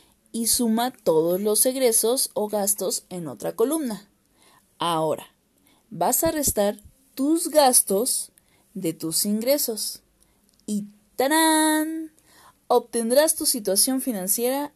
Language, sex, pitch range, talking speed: Spanish, female, 190-265 Hz, 100 wpm